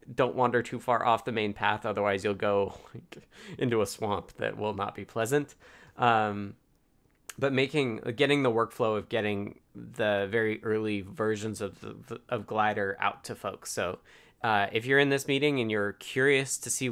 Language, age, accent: English, 20-39, American